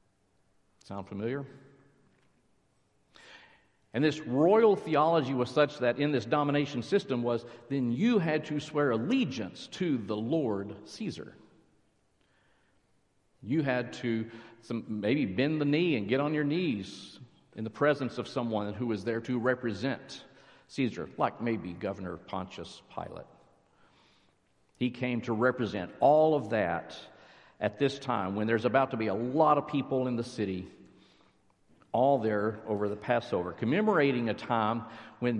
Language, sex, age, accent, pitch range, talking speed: English, male, 50-69, American, 110-140 Hz, 140 wpm